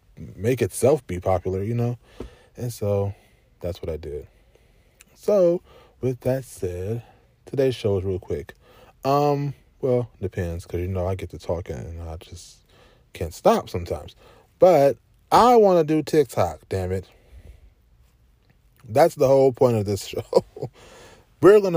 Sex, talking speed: male, 150 wpm